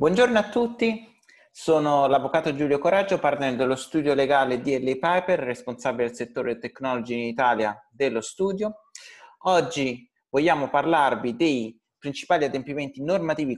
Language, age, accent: Italian, 30-49, native